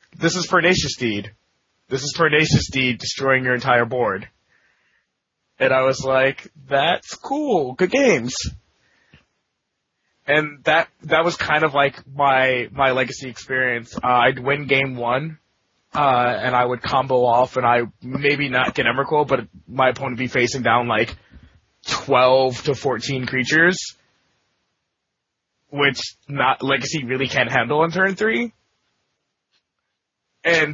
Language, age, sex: English, 20-39, male